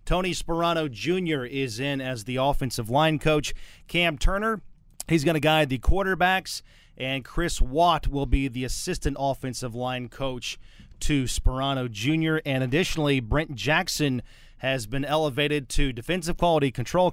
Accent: American